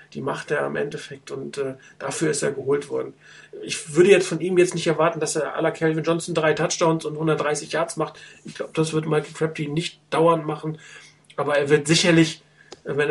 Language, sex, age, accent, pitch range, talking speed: German, male, 40-59, German, 150-170 Hz, 215 wpm